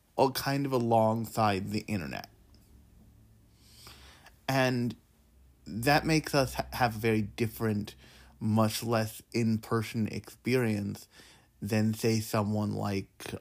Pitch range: 105-115 Hz